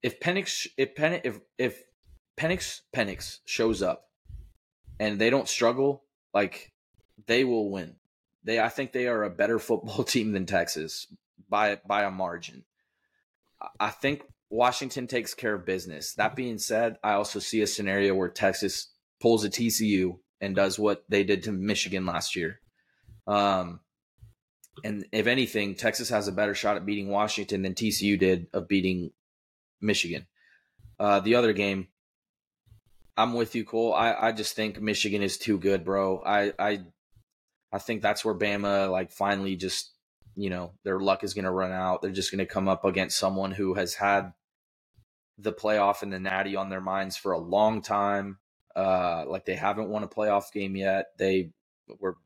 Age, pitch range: 20-39, 95-110 Hz